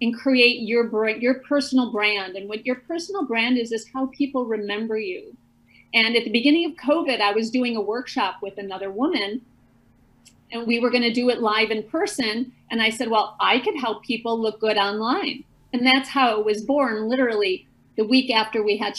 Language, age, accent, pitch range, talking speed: English, 40-59, American, 220-270 Hz, 200 wpm